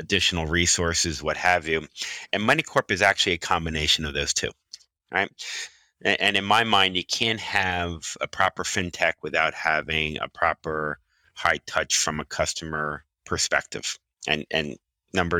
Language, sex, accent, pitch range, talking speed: English, male, American, 75-90 Hz, 155 wpm